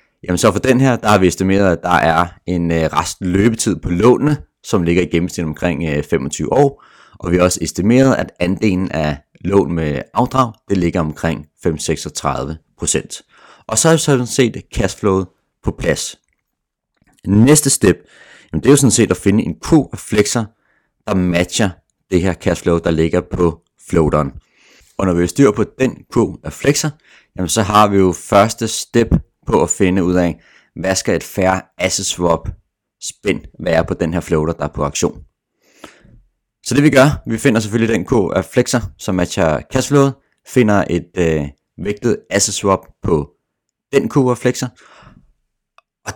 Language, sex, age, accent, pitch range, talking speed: Danish, male, 30-49, native, 85-115 Hz, 175 wpm